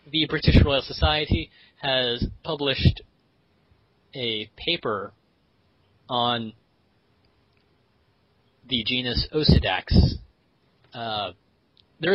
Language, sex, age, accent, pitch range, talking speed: English, male, 30-49, American, 105-135 Hz, 70 wpm